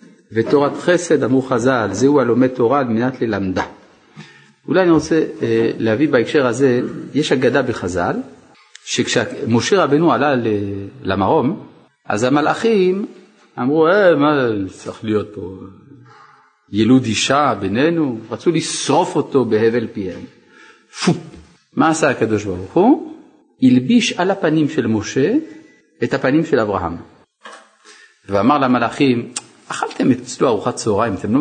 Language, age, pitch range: Hebrew, 50-69, 115-180 Hz